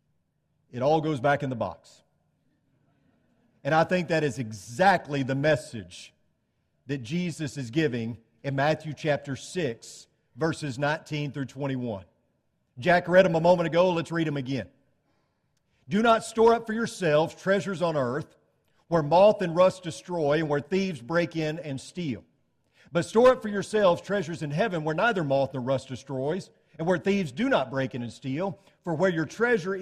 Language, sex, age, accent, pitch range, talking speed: English, male, 50-69, American, 140-185 Hz, 170 wpm